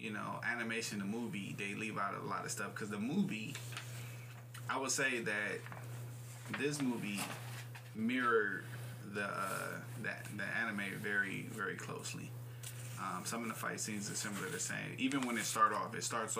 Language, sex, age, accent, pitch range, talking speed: English, male, 20-39, American, 115-125 Hz, 175 wpm